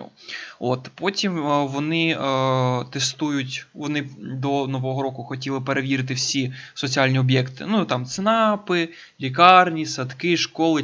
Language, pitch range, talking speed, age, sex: Ukrainian, 130-150 Hz, 115 wpm, 20-39, male